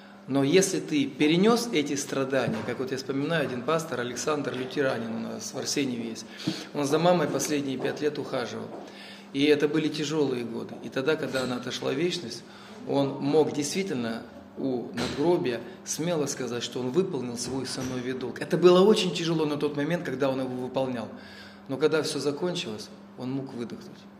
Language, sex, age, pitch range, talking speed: Russian, male, 20-39, 120-175 Hz, 170 wpm